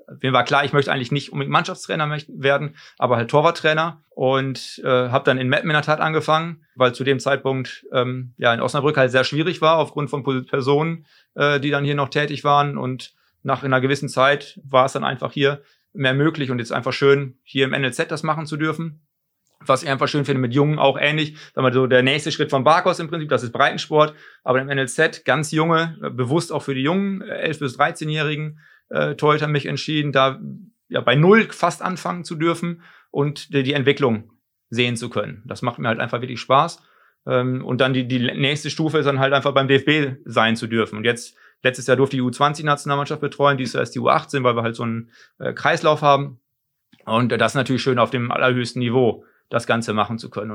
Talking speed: 210 wpm